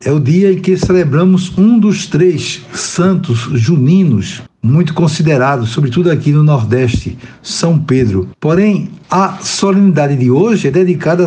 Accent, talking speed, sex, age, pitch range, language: Brazilian, 140 wpm, male, 60-79, 125-175 Hz, Portuguese